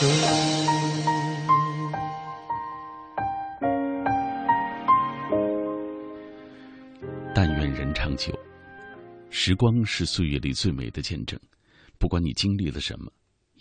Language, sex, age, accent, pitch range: Chinese, male, 50-69, native, 75-115 Hz